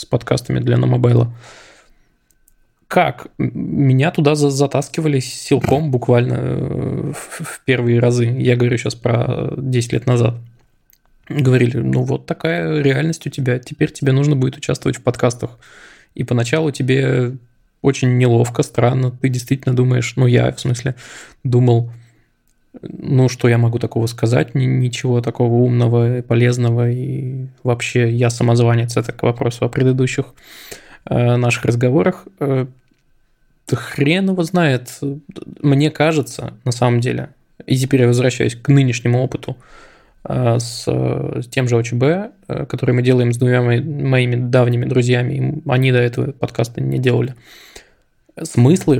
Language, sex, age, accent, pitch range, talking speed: Russian, male, 20-39, native, 120-140 Hz, 135 wpm